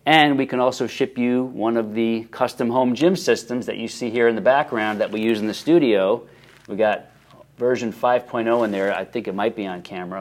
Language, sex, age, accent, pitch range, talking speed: English, male, 30-49, American, 110-130 Hz, 230 wpm